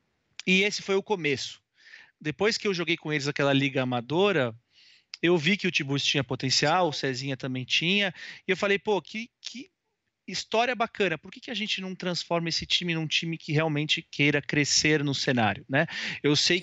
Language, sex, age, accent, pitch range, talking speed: Portuguese, male, 30-49, Brazilian, 135-200 Hz, 190 wpm